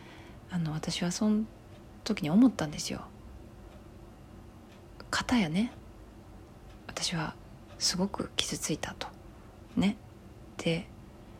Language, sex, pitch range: Japanese, female, 150-210 Hz